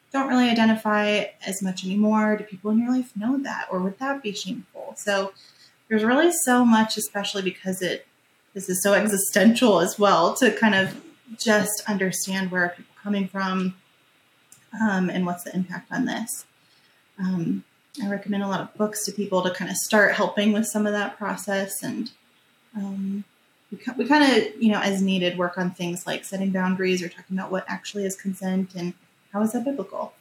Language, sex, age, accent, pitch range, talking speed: English, female, 20-39, American, 185-220 Hz, 190 wpm